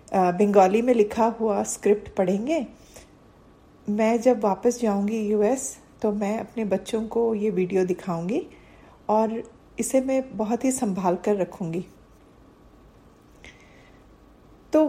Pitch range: 210-250 Hz